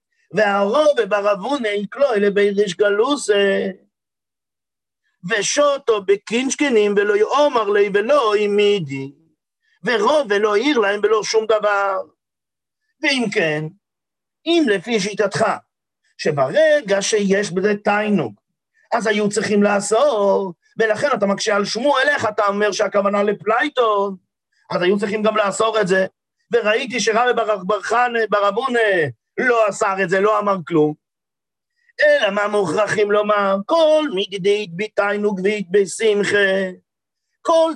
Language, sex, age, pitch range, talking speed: English, male, 50-69, 200-260 Hz, 100 wpm